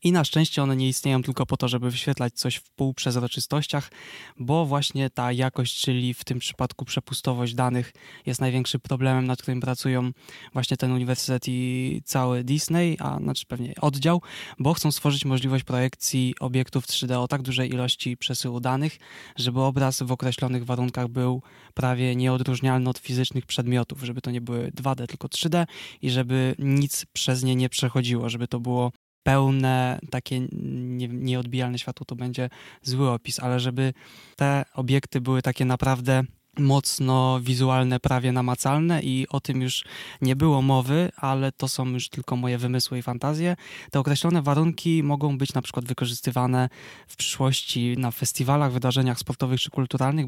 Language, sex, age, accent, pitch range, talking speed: Polish, male, 20-39, native, 125-135 Hz, 160 wpm